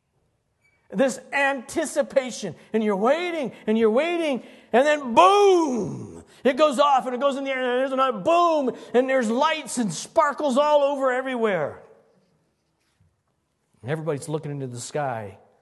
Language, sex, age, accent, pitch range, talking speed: English, male, 50-69, American, 175-275 Hz, 140 wpm